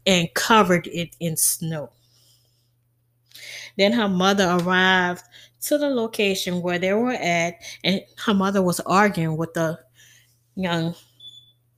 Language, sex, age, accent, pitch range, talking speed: English, female, 10-29, American, 155-200 Hz, 120 wpm